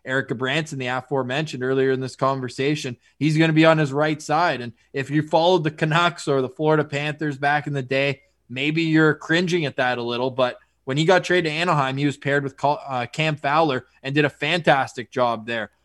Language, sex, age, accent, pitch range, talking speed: English, male, 20-39, American, 130-160 Hz, 215 wpm